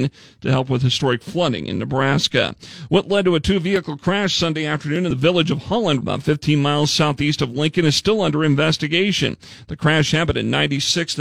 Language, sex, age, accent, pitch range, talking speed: English, male, 40-59, American, 135-170 Hz, 185 wpm